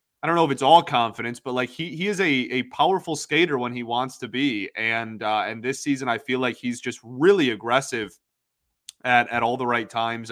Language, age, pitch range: English, 20-39, 115-140 Hz